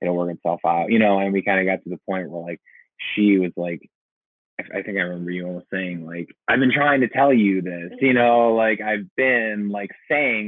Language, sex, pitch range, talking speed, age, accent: English, male, 90-100 Hz, 235 wpm, 20-39, American